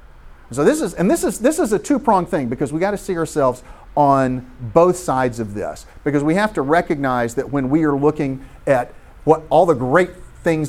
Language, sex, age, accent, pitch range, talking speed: English, male, 40-59, American, 115-145 Hz, 215 wpm